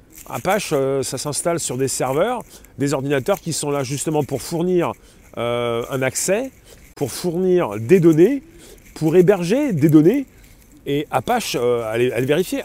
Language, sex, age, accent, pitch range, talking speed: French, male, 40-59, French, 120-150 Hz, 145 wpm